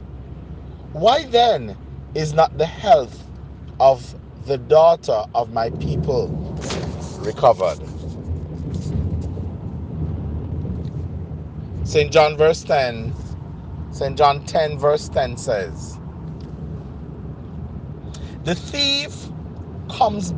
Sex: male